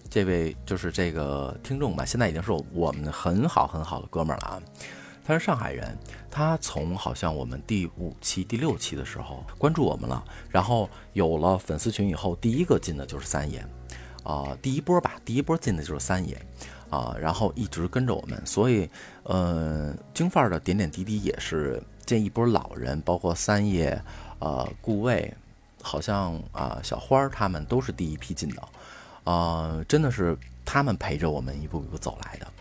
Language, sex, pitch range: Chinese, male, 75-110 Hz